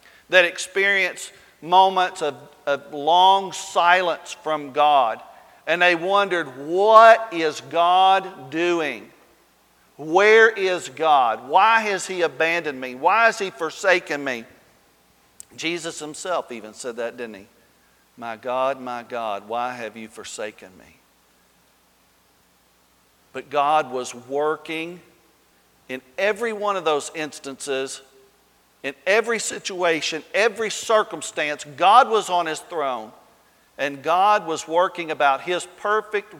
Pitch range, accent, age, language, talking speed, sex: 145-185 Hz, American, 50-69, English, 120 wpm, male